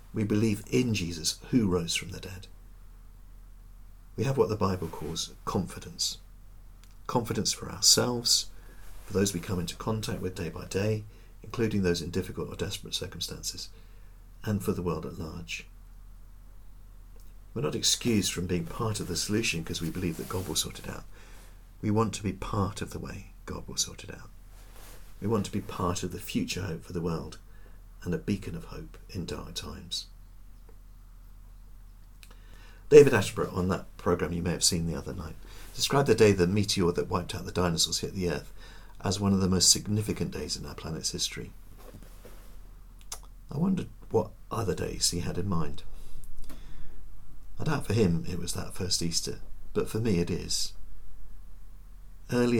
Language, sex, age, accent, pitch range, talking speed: English, male, 50-69, British, 85-95 Hz, 175 wpm